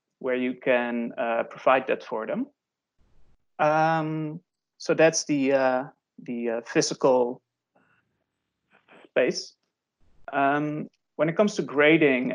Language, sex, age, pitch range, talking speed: English, male, 30-49, 130-160 Hz, 110 wpm